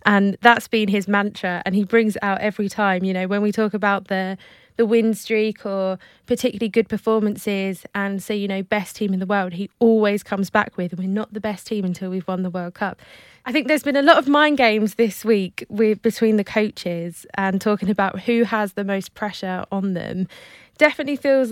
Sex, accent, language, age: female, British, English, 20-39